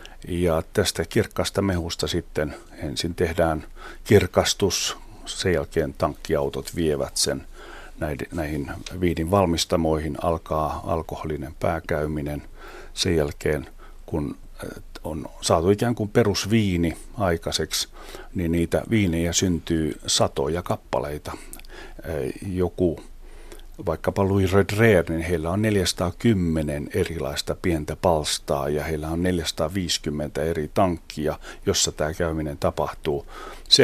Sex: male